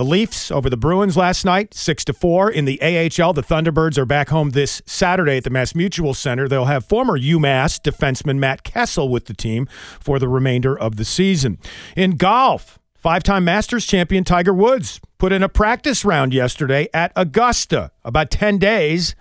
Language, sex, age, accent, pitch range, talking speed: English, male, 40-59, American, 130-185 Hz, 180 wpm